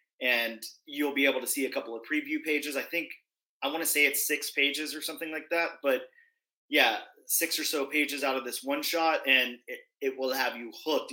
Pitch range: 130-160 Hz